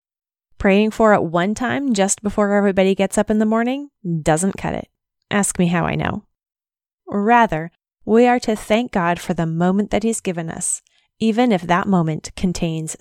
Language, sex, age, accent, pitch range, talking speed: English, female, 20-39, American, 175-215 Hz, 180 wpm